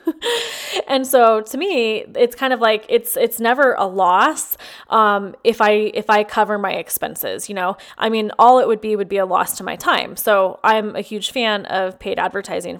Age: 20-39